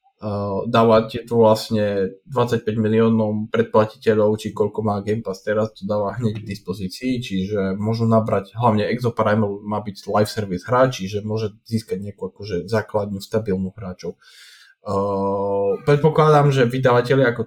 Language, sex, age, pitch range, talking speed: Slovak, male, 20-39, 100-125 Hz, 140 wpm